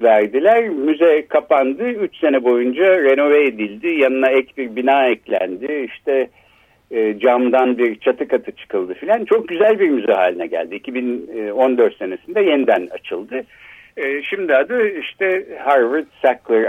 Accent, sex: native, male